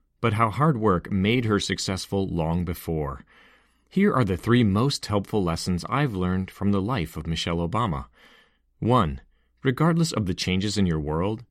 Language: English